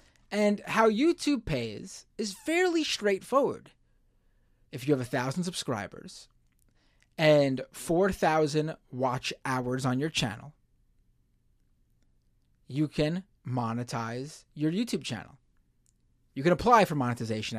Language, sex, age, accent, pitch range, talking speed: English, male, 20-39, American, 120-175 Hz, 105 wpm